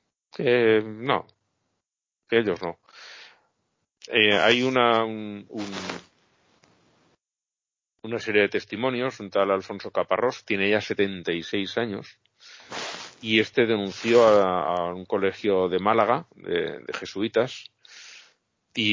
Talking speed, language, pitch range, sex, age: 115 wpm, Spanish, 95-115 Hz, male, 40-59